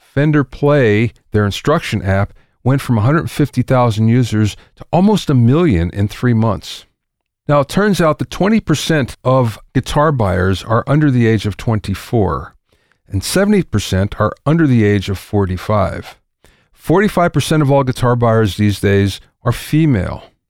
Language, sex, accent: English, male, American